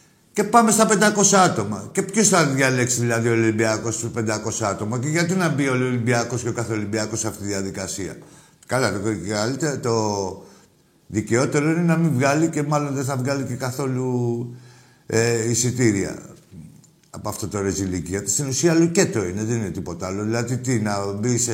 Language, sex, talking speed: Greek, male, 175 wpm